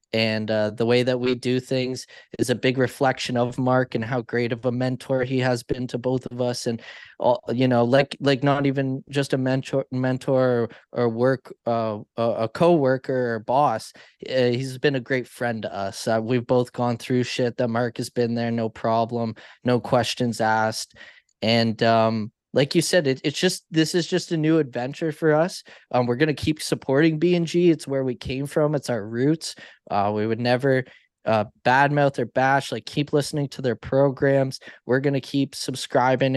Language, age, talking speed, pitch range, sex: English, 20-39, 195 wpm, 120-145 Hz, male